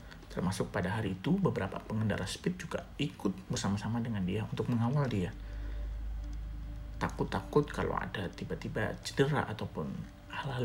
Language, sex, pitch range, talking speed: Indonesian, male, 105-140 Hz, 125 wpm